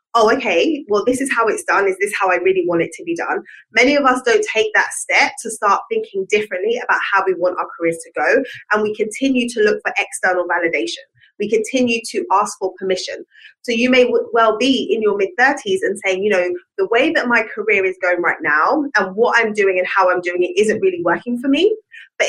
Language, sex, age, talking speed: English, female, 20-39, 235 wpm